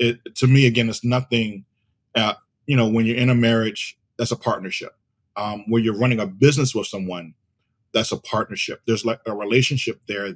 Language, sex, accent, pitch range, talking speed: English, male, American, 105-120 Hz, 185 wpm